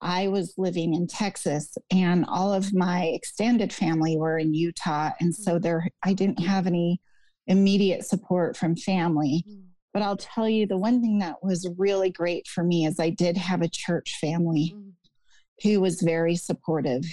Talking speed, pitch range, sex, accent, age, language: 170 wpm, 165-190 Hz, female, American, 30-49, English